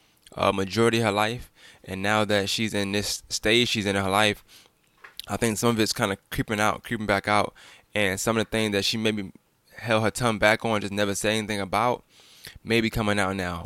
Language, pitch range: English, 100-115 Hz